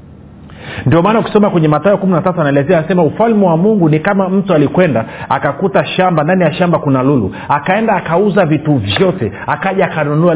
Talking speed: 170 wpm